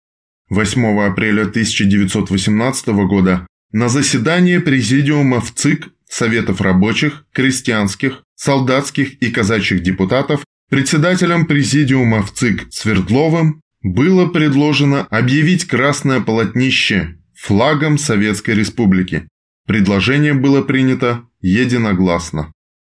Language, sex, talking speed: Russian, male, 85 wpm